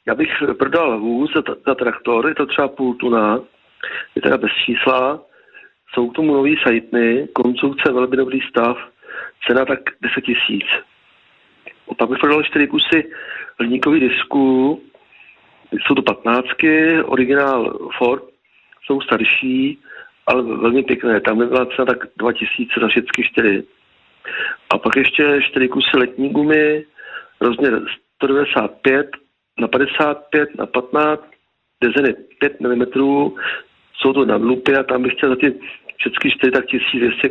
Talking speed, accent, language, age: 125 wpm, native, Czech, 40-59